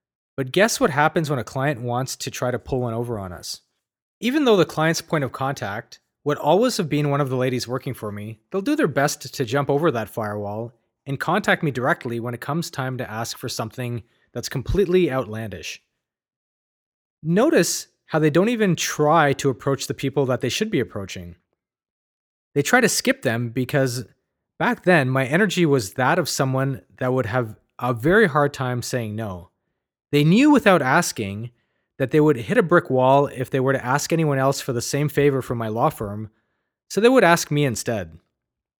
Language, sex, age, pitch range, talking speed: English, male, 20-39, 120-165 Hz, 200 wpm